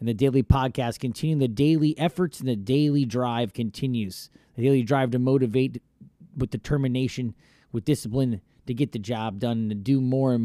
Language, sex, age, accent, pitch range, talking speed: English, male, 30-49, American, 115-135 Hz, 185 wpm